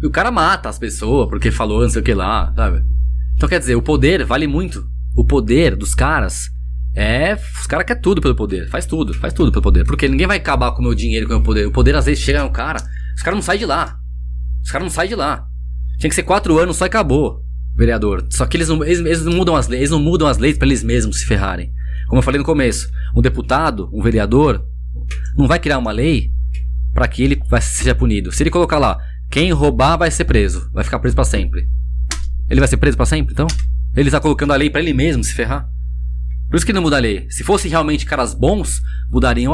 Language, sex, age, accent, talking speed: Portuguese, male, 20-39, Brazilian, 245 wpm